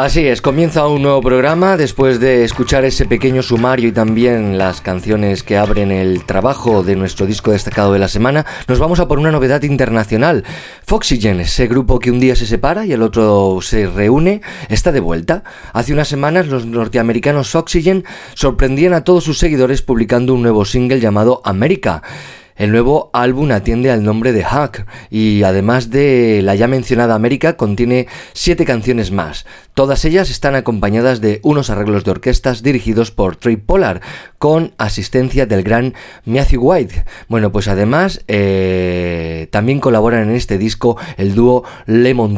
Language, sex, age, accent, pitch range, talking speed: Spanish, male, 30-49, Spanish, 105-130 Hz, 165 wpm